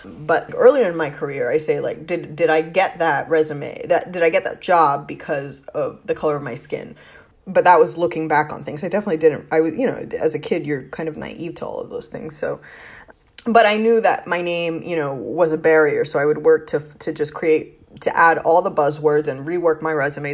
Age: 20-39